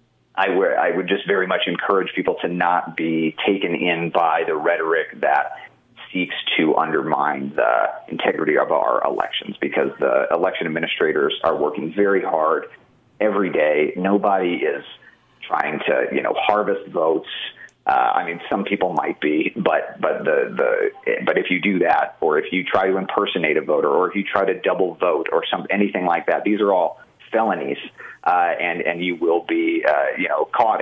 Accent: American